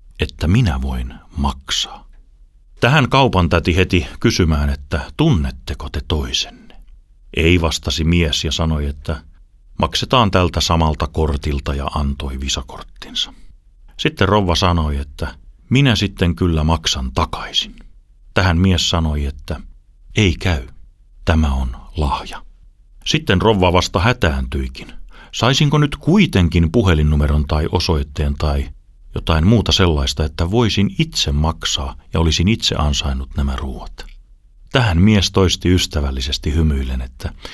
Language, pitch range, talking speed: Finnish, 70-95 Hz, 120 wpm